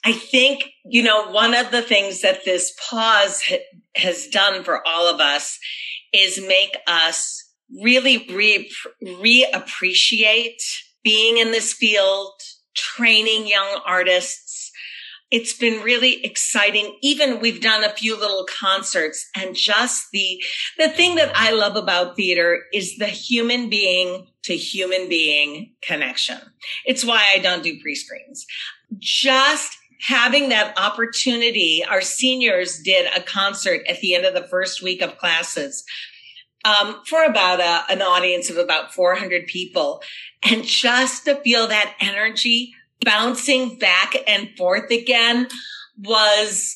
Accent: American